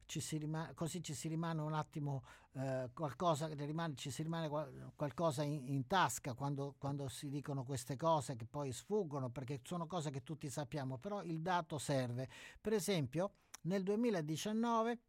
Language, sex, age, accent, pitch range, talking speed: Italian, male, 50-69, native, 140-195 Hz, 140 wpm